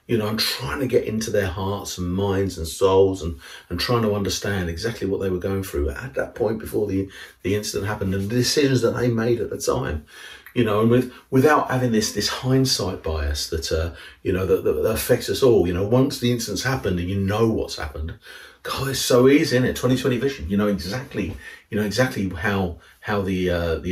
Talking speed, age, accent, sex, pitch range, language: 225 wpm, 40-59, British, male, 90-120 Hz, English